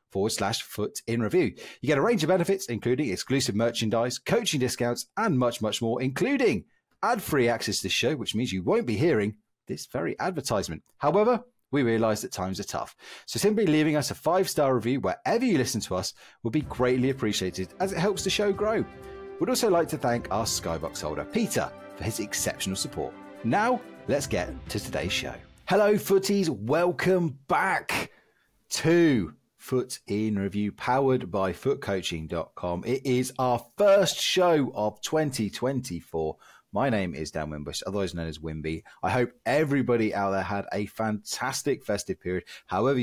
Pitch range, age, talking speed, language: 95-140 Hz, 30-49, 165 wpm, English